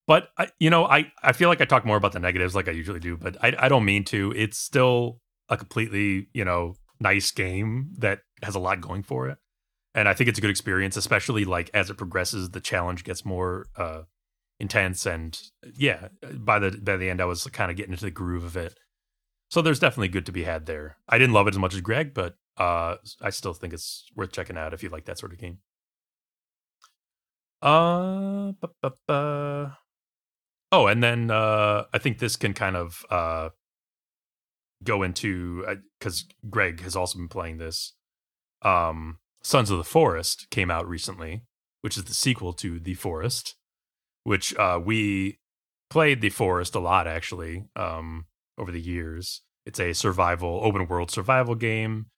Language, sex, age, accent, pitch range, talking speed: English, male, 30-49, American, 90-115 Hz, 185 wpm